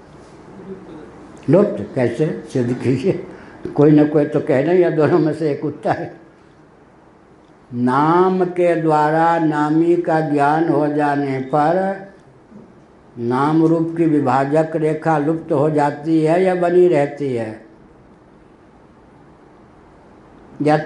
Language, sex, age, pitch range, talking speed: Hindi, male, 60-79, 145-160 Hz, 110 wpm